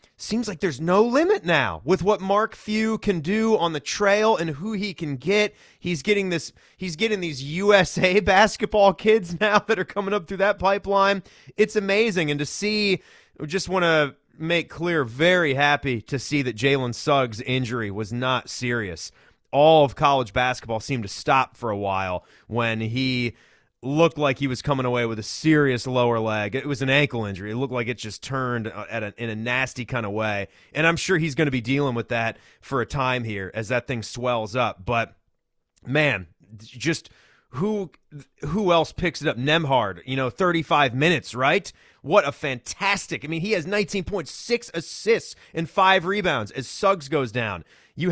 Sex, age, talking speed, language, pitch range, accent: male, 30-49, 190 wpm, English, 125-195 Hz, American